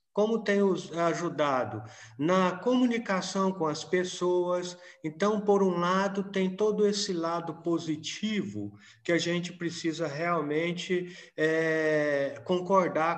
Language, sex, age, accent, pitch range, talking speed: Portuguese, male, 50-69, Brazilian, 160-205 Hz, 105 wpm